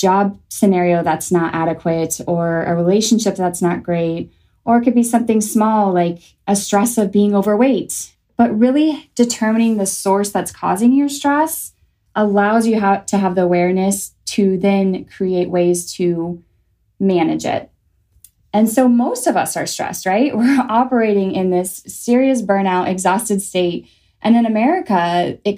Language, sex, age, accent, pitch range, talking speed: English, female, 20-39, American, 180-225 Hz, 150 wpm